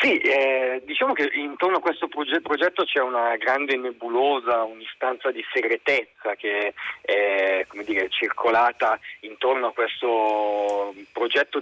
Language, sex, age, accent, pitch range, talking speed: Italian, male, 40-59, native, 105-170 Hz, 125 wpm